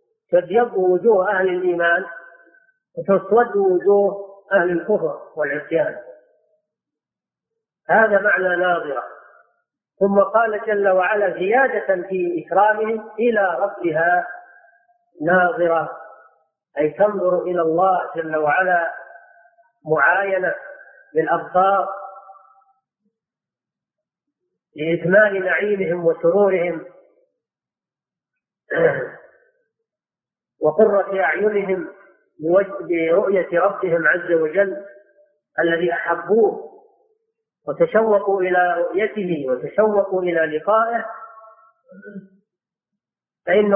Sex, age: female, 40-59